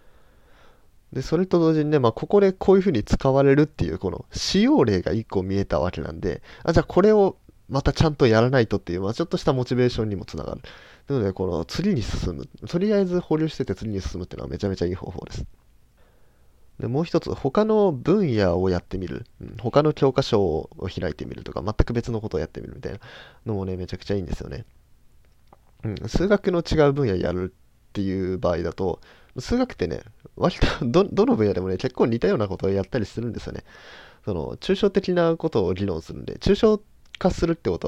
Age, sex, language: 20-39, male, Japanese